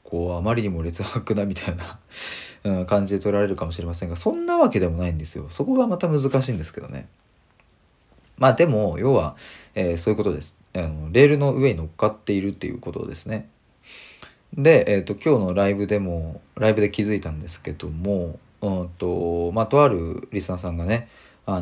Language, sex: Japanese, male